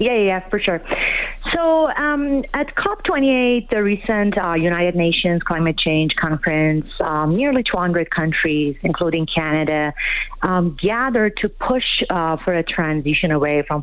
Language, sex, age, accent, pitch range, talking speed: English, female, 40-59, American, 160-215 Hz, 145 wpm